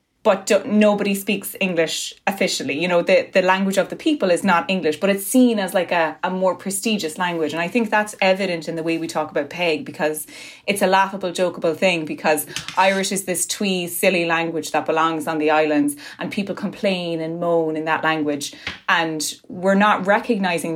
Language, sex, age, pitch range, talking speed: English, female, 20-39, 160-200 Hz, 195 wpm